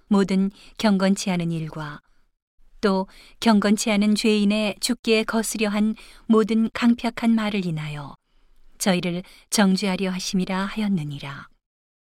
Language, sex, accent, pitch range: Korean, female, native, 180-215 Hz